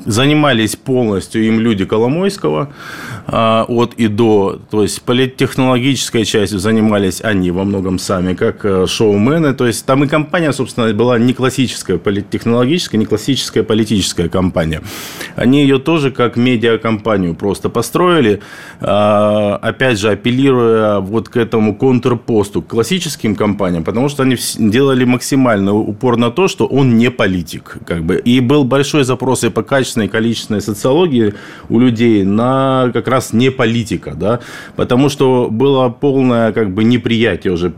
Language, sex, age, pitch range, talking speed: Russian, male, 20-39, 105-130 Hz, 140 wpm